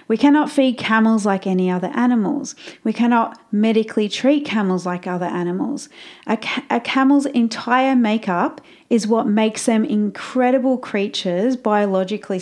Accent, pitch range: Australian, 185-250 Hz